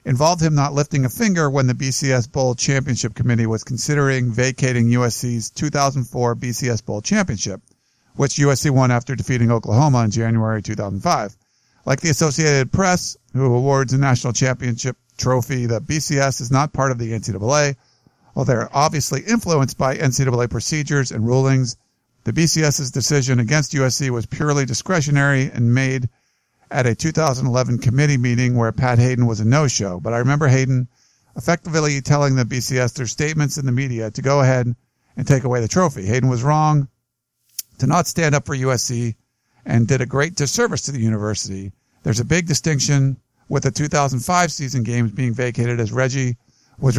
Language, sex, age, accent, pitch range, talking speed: English, male, 50-69, American, 120-140 Hz, 165 wpm